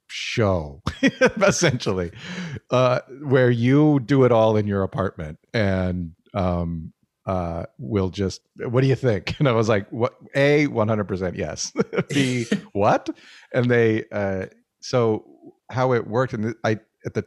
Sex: male